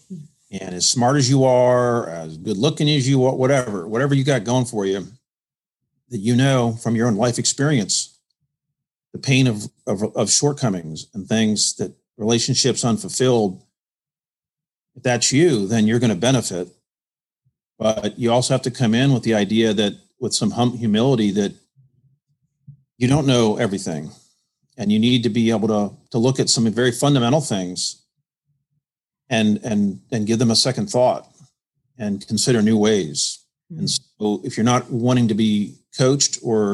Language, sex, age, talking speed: English, male, 40-59, 165 wpm